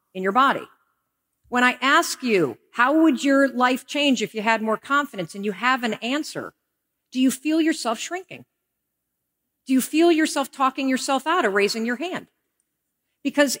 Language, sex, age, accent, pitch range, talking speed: English, female, 50-69, American, 200-275 Hz, 170 wpm